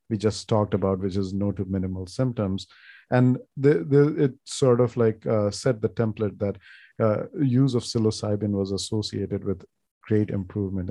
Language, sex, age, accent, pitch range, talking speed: English, male, 50-69, Indian, 100-120 Hz, 170 wpm